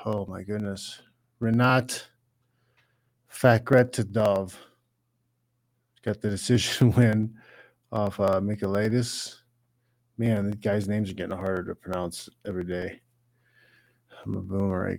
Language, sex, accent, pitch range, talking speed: English, male, American, 105-125 Hz, 110 wpm